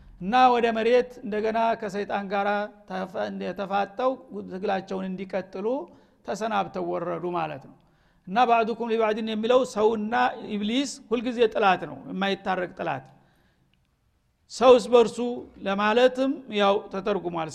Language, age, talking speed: Amharic, 50-69, 105 wpm